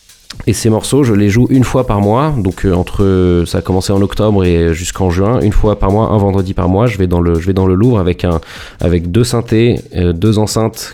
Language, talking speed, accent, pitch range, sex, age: French, 240 wpm, French, 90-110 Hz, male, 20-39